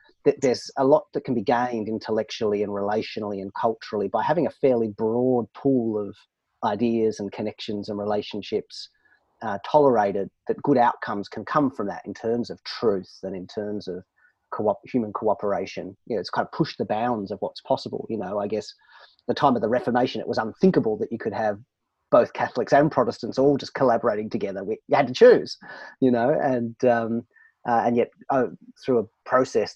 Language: English